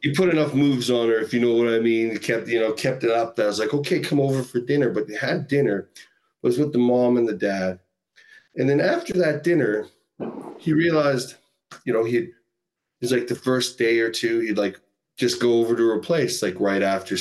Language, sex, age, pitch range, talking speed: English, male, 40-59, 115-150 Hz, 235 wpm